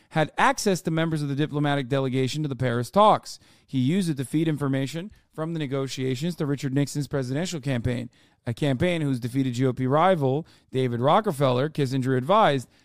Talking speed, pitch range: 170 wpm, 135-180 Hz